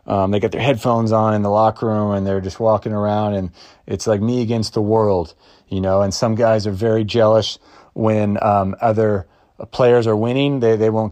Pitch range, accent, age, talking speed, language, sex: 105-120 Hz, American, 30-49, 210 wpm, English, male